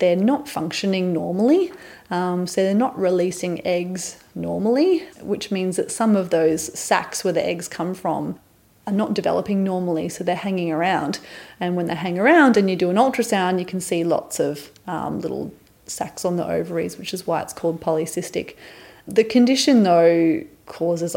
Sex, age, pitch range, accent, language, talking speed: female, 30-49, 170-195 Hz, Australian, English, 175 wpm